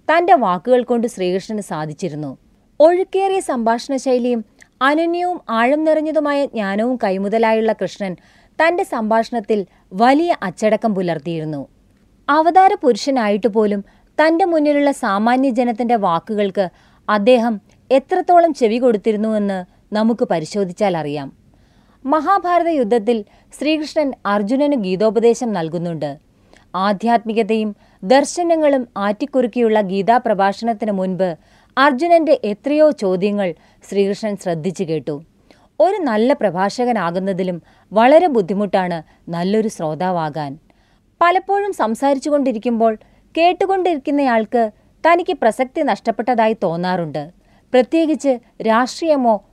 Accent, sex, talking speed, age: native, female, 80 wpm, 30-49